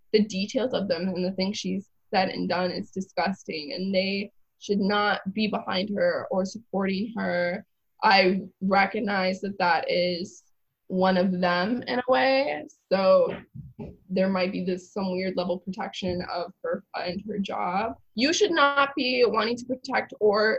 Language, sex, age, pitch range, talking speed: English, female, 10-29, 185-215 Hz, 165 wpm